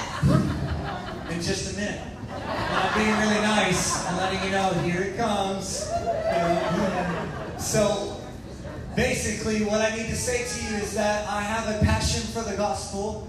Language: English